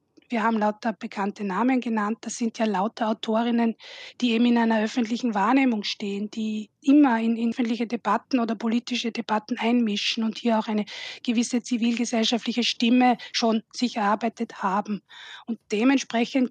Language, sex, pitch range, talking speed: German, female, 215-245 Hz, 145 wpm